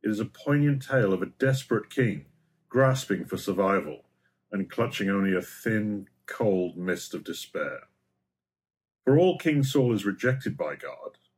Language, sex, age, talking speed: English, male, 50-69, 155 wpm